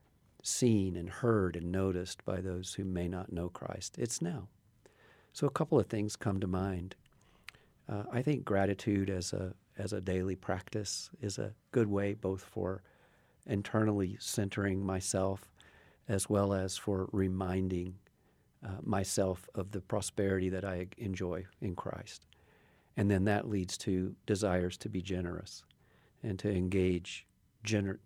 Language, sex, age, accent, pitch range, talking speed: English, male, 50-69, American, 95-105 Hz, 150 wpm